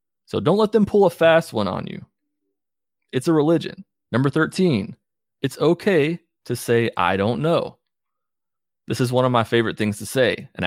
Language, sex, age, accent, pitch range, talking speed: English, male, 30-49, American, 100-140 Hz, 180 wpm